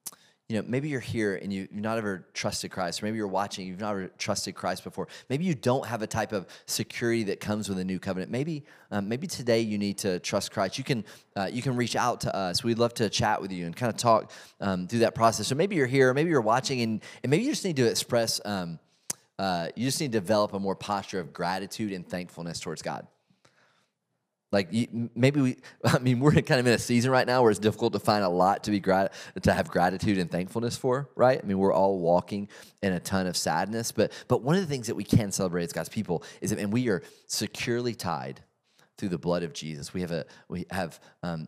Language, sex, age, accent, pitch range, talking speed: English, male, 30-49, American, 95-125 Hz, 245 wpm